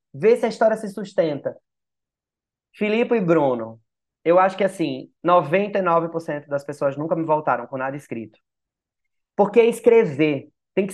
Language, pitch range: Portuguese, 130-175 Hz